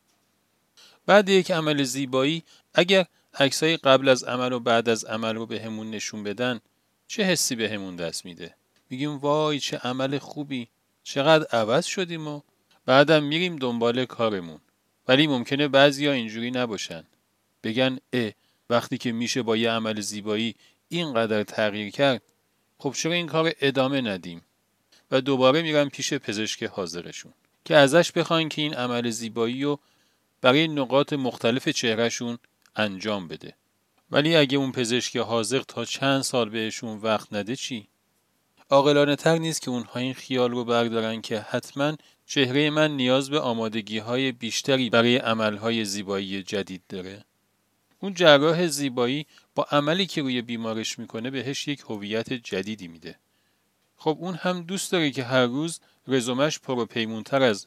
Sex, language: male, Persian